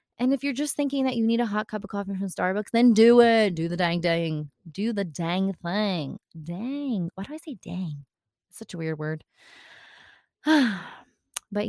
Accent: American